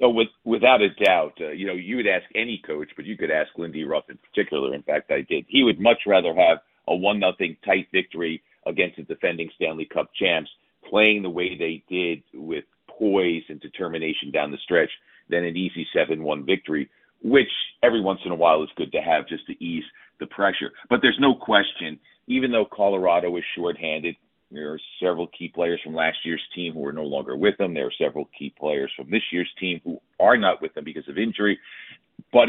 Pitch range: 85-105 Hz